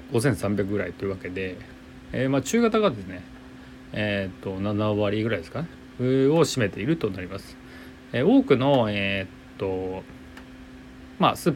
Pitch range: 95-140 Hz